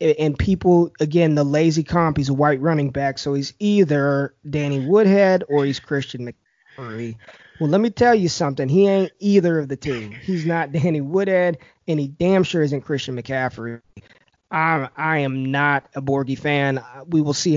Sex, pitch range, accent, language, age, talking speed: male, 135-160 Hz, American, English, 20-39, 180 wpm